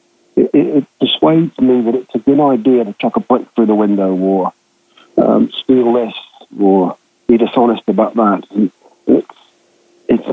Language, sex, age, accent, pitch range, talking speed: English, male, 50-69, British, 110-130 Hz, 170 wpm